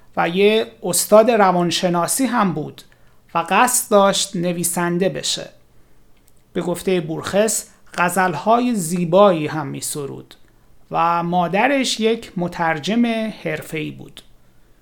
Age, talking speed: 30-49, 100 wpm